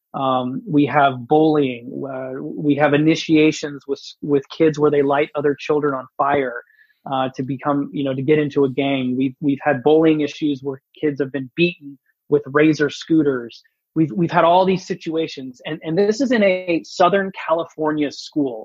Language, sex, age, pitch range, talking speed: English, male, 20-39, 145-170 Hz, 185 wpm